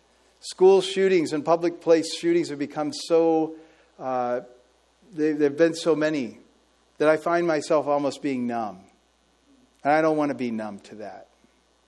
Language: English